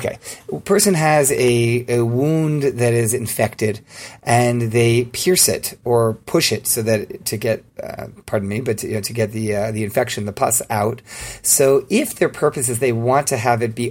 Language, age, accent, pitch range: English, 30-49, American, 110-135 Hz